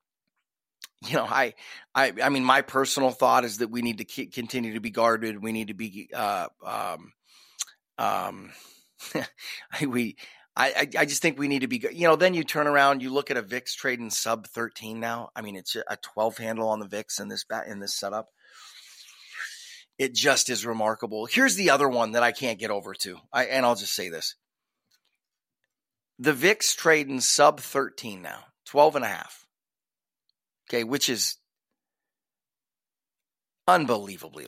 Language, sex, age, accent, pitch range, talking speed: English, male, 30-49, American, 110-145 Hz, 170 wpm